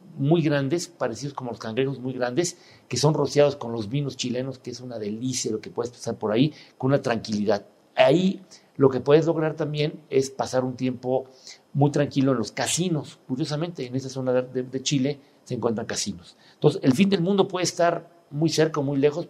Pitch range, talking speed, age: 125-155 Hz, 205 wpm, 50-69